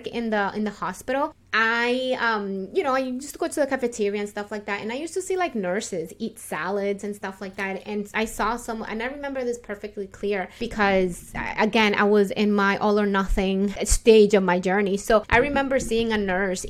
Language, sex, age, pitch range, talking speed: English, female, 20-39, 195-240 Hz, 225 wpm